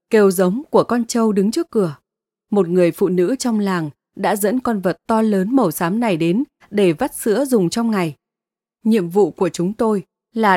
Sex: female